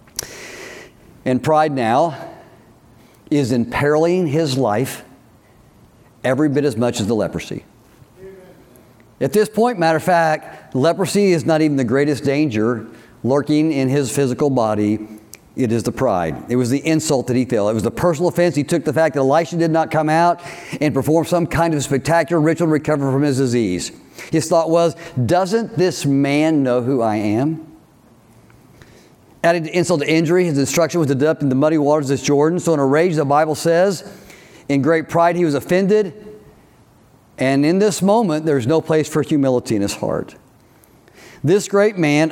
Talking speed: 175 wpm